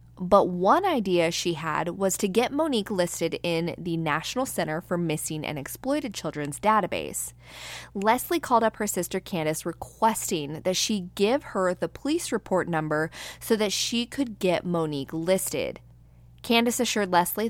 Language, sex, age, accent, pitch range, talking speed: English, female, 20-39, American, 160-215 Hz, 155 wpm